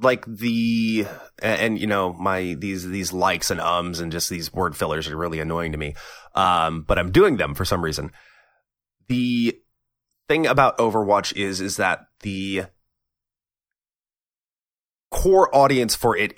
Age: 20-39